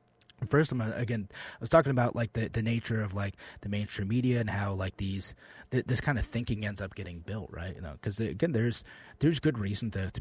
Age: 30-49